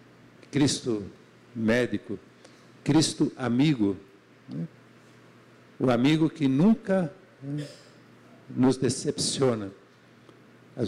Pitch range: 115-140 Hz